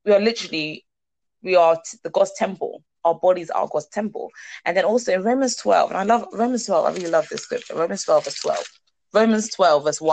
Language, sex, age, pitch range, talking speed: English, female, 20-39, 160-210 Hz, 215 wpm